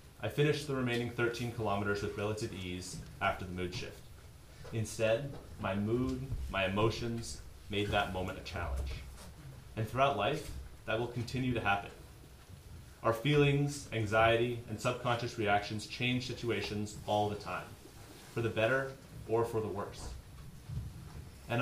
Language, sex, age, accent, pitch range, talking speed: English, male, 30-49, American, 105-125 Hz, 140 wpm